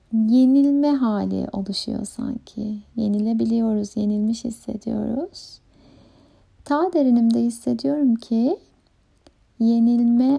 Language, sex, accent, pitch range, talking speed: Turkish, female, native, 220-260 Hz, 70 wpm